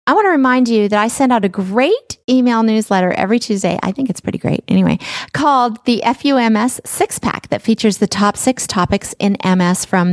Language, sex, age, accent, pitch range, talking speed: English, female, 40-59, American, 195-255 Hz, 205 wpm